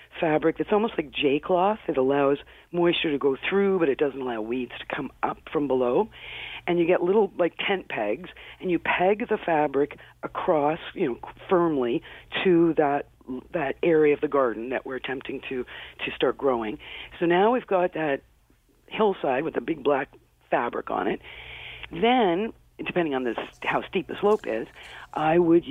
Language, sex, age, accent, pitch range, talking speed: English, female, 50-69, American, 140-180 Hz, 175 wpm